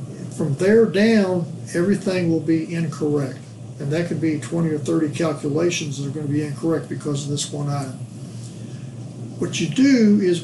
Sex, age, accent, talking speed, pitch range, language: male, 50-69, American, 170 wpm, 150-180 Hz, English